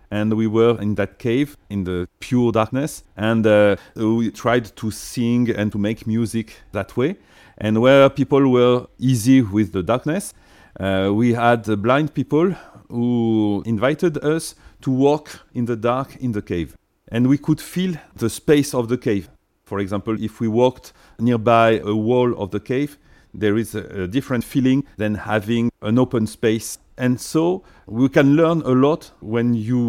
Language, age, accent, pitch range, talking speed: English, 40-59, French, 105-135 Hz, 170 wpm